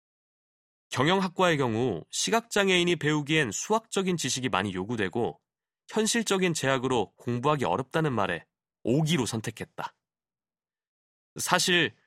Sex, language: male, Korean